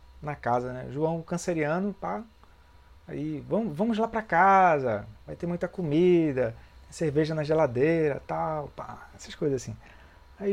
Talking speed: 140 wpm